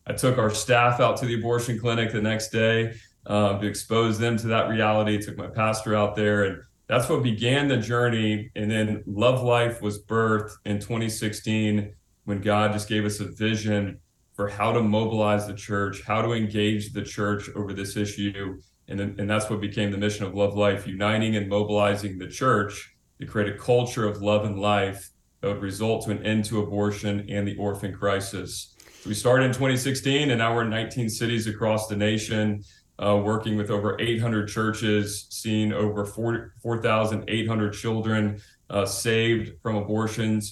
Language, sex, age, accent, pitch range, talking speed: English, male, 40-59, American, 105-115 Hz, 180 wpm